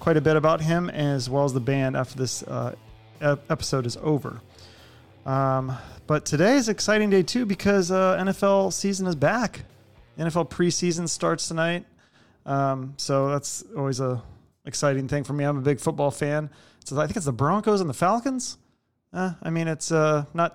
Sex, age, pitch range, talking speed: male, 30-49, 130-170 Hz, 185 wpm